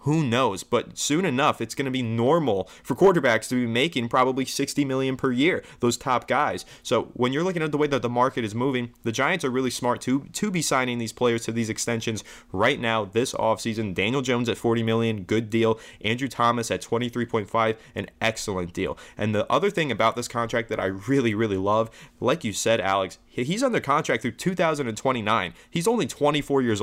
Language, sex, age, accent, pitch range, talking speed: English, male, 20-39, American, 110-135 Hz, 205 wpm